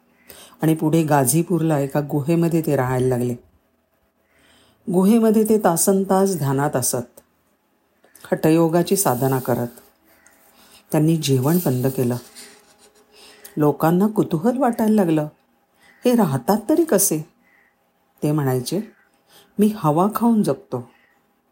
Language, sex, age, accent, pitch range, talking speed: Marathi, female, 50-69, native, 135-190 Hz, 80 wpm